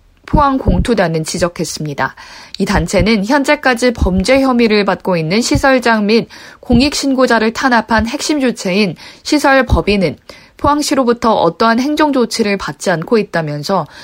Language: Korean